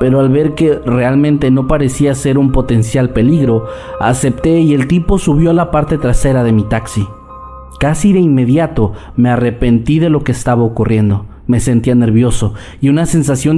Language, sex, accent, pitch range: Spanish, male, Mexican, 110-150 Hz